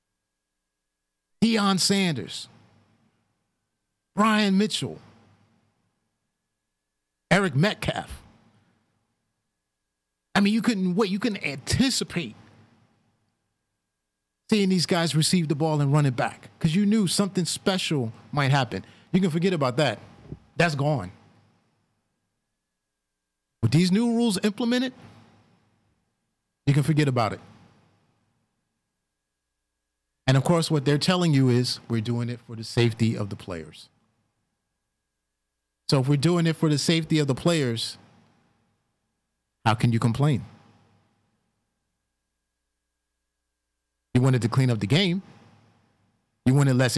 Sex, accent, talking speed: male, American, 115 wpm